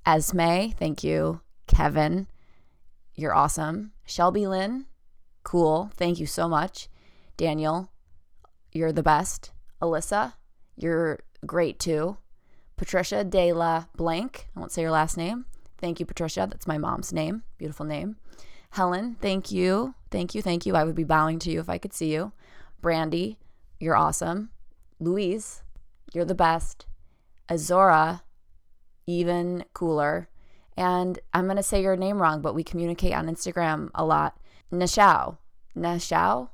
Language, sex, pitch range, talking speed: English, female, 155-185 Hz, 140 wpm